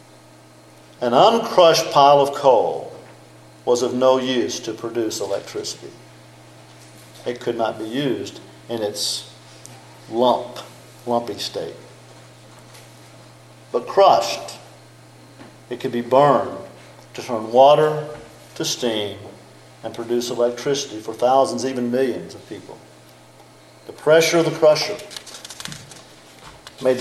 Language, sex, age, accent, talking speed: English, male, 50-69, American, 105 wpm